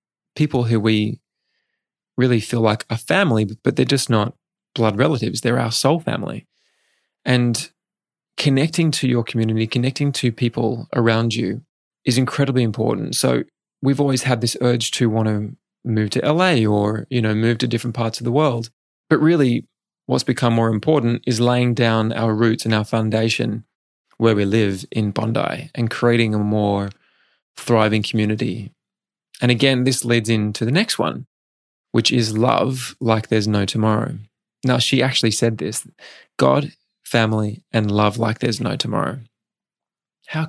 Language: English